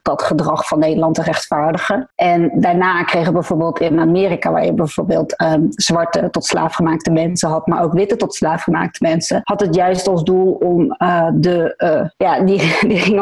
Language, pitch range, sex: Dutch, 160-190 Hz, female